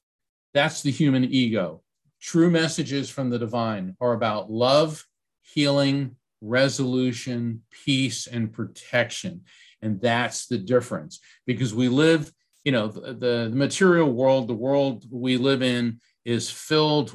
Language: English